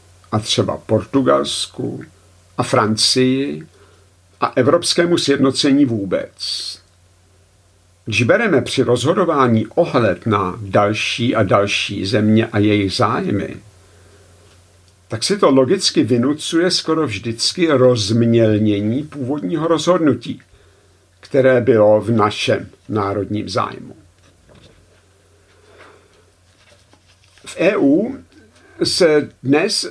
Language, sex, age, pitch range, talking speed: Czech, male, 50-69, 95-130 Hz, 85 wpm